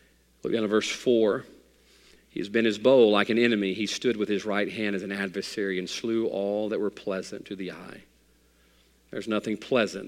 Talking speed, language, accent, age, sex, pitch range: 200 wpm, English, American, 40-59, male, 105-165 Hz